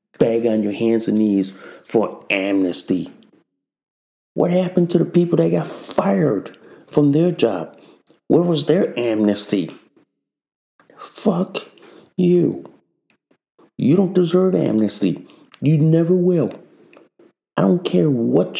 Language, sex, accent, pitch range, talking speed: English, male, American, 115-170 Hz, 115 wpm